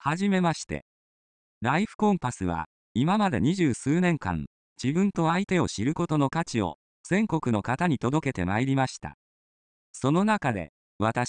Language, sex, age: Japanese, male, 40-59